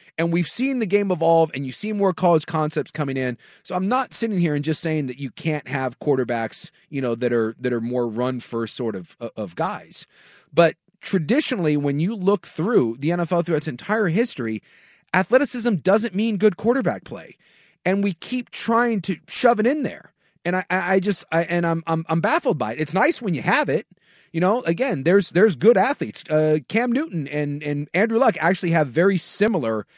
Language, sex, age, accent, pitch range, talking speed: English, male, 30-49, American, 150-205 Hz, 205 wpm